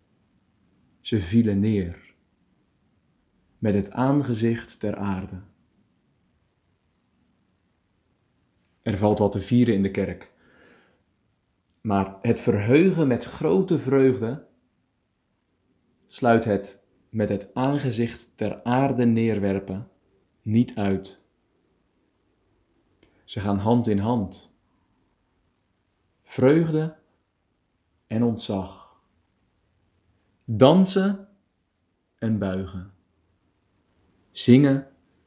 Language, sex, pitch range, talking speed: Dutch, male, 95-115 Hz, 75 wpm